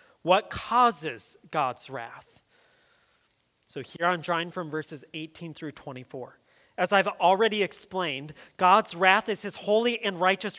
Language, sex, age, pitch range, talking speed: English, male, 30-49, 180-235 Hz, 135 wpm